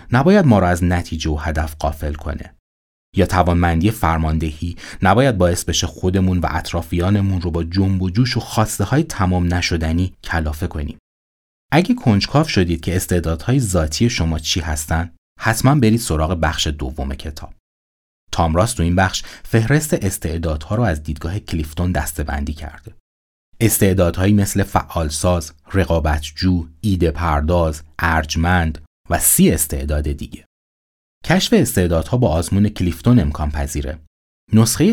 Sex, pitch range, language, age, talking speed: male, 80-105 Hz, Persian, 30-49, 125 wpm